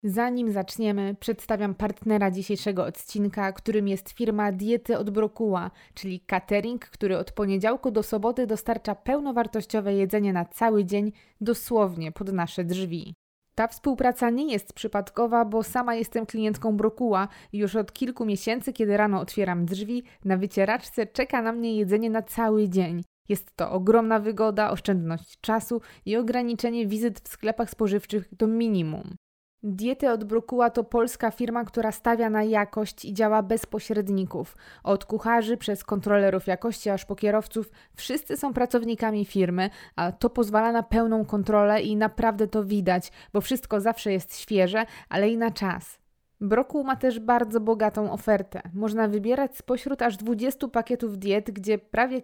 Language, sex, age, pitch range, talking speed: Polish, female, 20-39, 200-230 Hz, 150 wpm